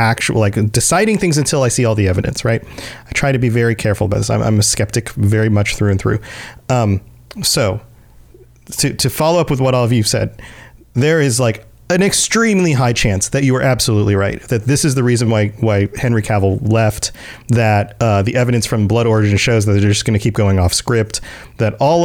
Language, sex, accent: English, male, American